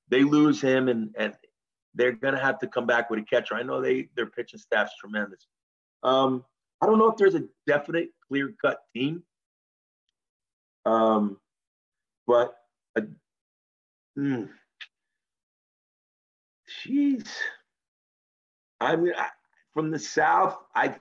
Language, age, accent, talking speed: English, 50-69, American, 125 wpm